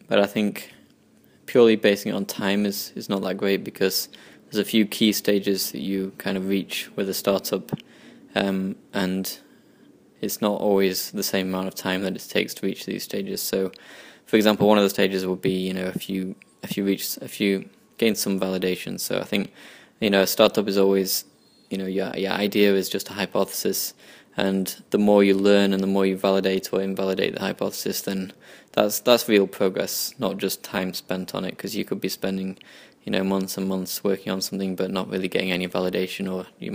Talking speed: 210 wpm